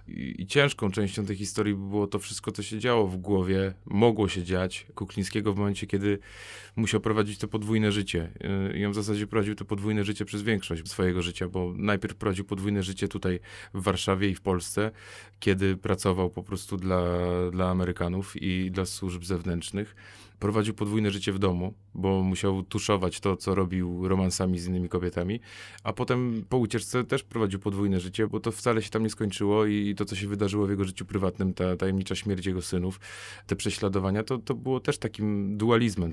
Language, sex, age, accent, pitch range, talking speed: Polish, male, 30-49, native, 95-110 Hz, 185 wpm